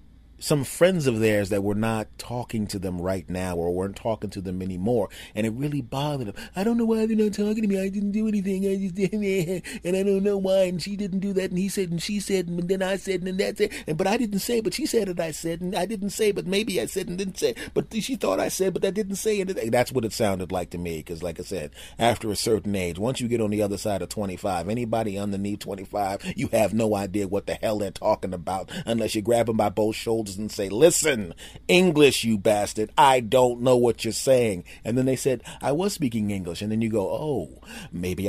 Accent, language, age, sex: American, English, 30-49, male